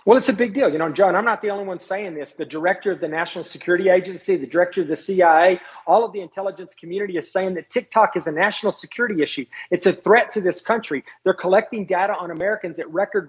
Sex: male